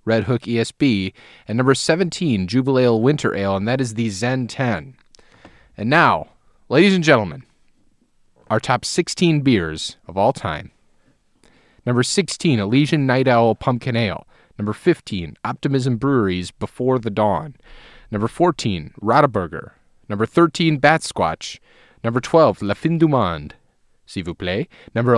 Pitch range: 110-150 Hz